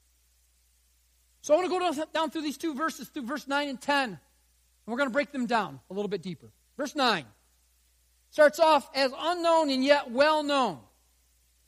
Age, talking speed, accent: 40-59, 180 wpm, American